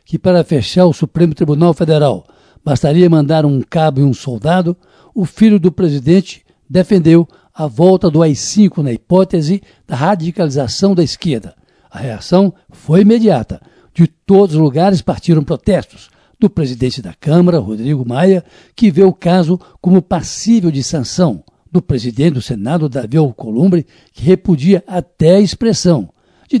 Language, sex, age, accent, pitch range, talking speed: Portuguese, male, 60-79, Brazilian, 150-185 Hz, 145 wpm